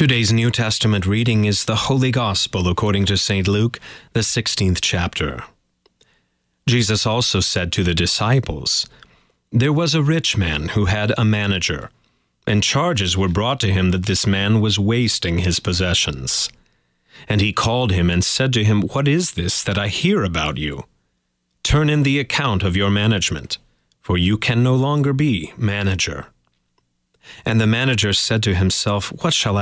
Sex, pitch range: male, 90-120 Hz